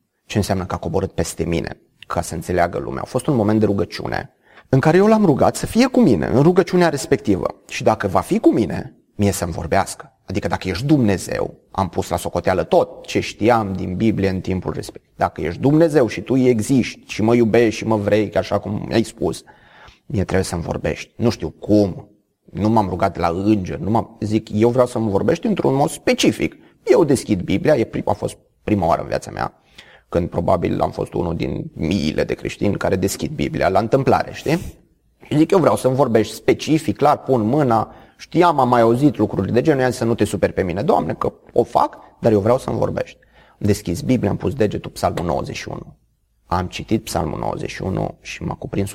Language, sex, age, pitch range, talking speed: Romanian, male, 30-49, 95-130 Hz, 200 wpm